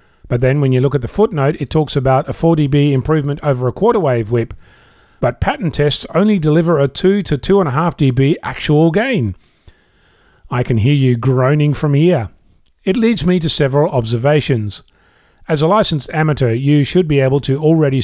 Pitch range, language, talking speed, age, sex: 130-155 Hz, English, 180 wpm, 40-59, male